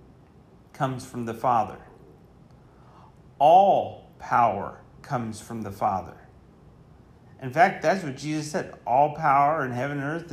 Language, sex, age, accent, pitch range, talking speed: English, male, 40-59, American, 125-155 Hz, 130 wpm